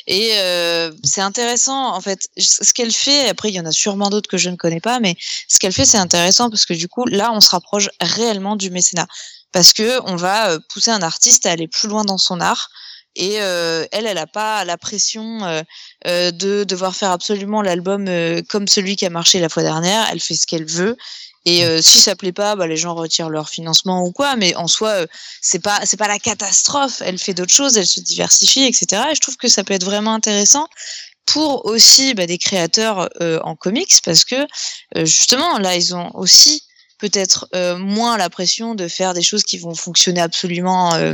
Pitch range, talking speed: 175-220 Hz, 220 wpm